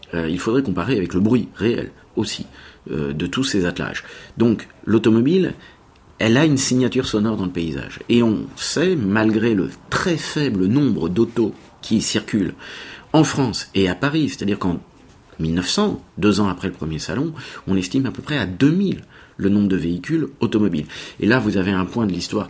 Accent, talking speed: French, 185 wpm